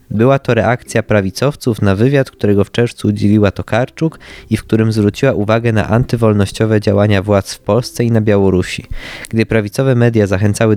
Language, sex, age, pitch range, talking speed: Polish, male, 20-39, 100-120 Hz, 160 wpm